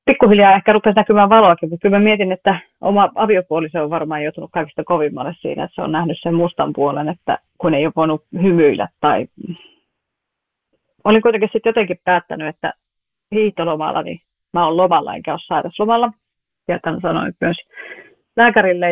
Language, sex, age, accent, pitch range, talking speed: Finnish, female, 30-49, native, 165-205 Hz, 160 wpm